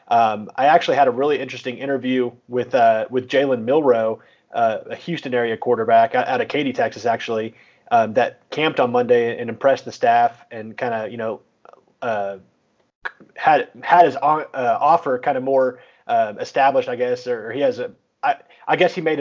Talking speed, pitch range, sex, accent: 185 wpm, 115-135 Hz, male, American